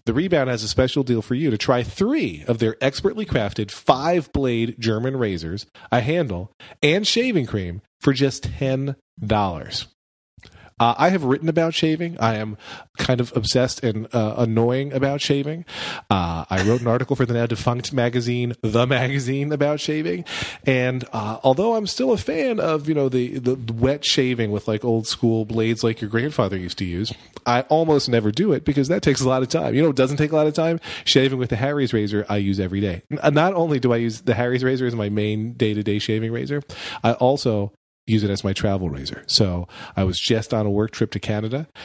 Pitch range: 105-140 Hz